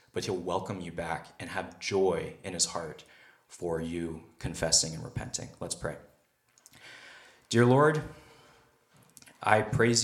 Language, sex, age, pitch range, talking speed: English, male, 20-39, 90-115 Hz, 130 wpm